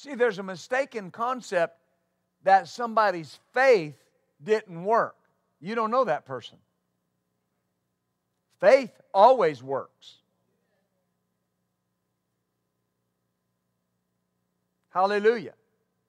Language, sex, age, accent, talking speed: English, male, 50-69, American, 70 wpm